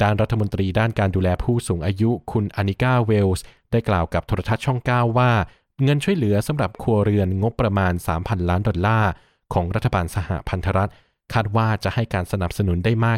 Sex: male